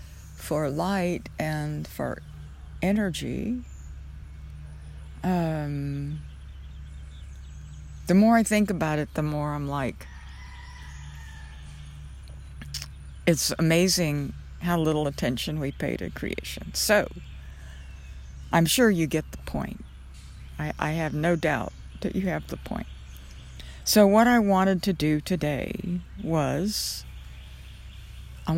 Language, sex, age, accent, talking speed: English, female, 60-79, American, 105 wpm